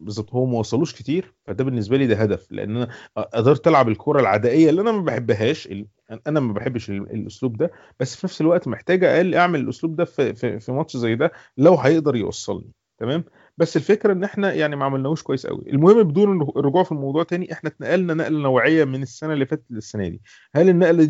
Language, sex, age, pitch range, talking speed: Arabic, male, 30-49, 120-160 Hz, 200 wpm